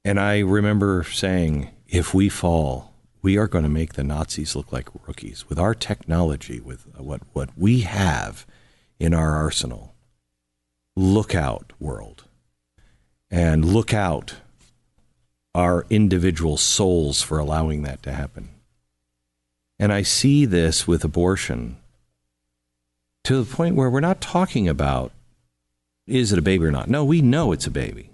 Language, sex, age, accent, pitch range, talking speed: English, male, 50-69, American, 70-110 Hz, 145 wpm